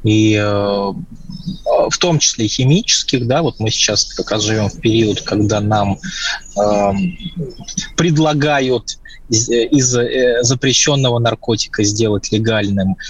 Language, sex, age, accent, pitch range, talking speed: Russian, male, 20-39, native, 100-140 Hz, 120 wpm